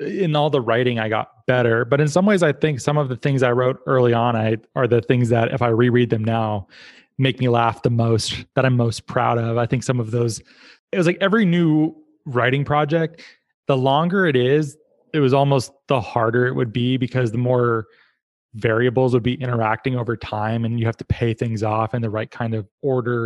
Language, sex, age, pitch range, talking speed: English, male, 20-39, 115-140 Hz, 220 wpm